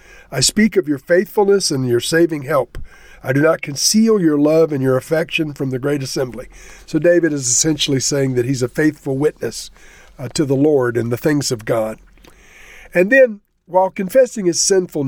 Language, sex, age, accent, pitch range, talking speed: English, male, 50-69, American, 135-175 Hz, 185 wpm